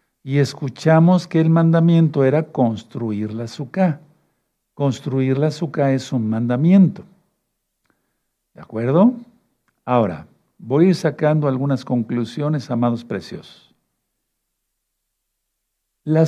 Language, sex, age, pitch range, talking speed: Spanish, male, 60-79, 125-165 Hz, 100 wpm